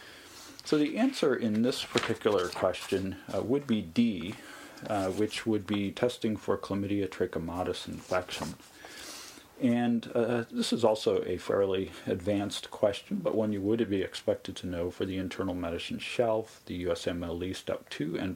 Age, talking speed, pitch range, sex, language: 40-59, 155 wpm, 95-115 Hz, male, English